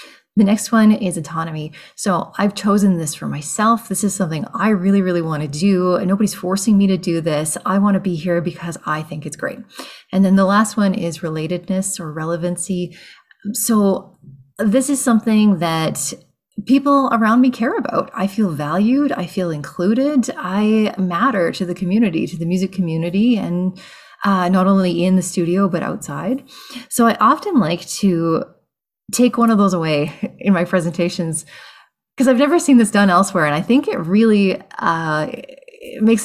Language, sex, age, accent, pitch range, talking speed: English, female, 30-49, American, 175-230 Hz, 175 wpm